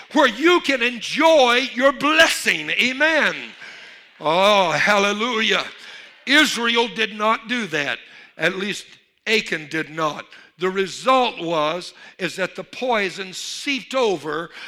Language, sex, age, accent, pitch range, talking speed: English, male, 60-79, American, 165-240 Hz, 115 wpm